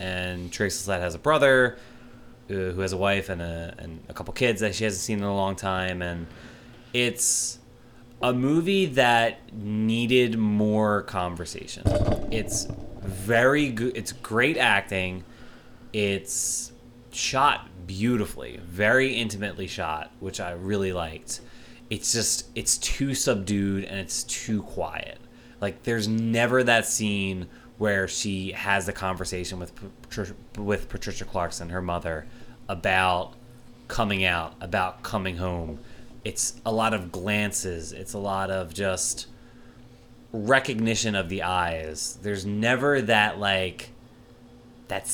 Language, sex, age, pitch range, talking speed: English, male, 20-39, 95-120 Hz, 130 wpm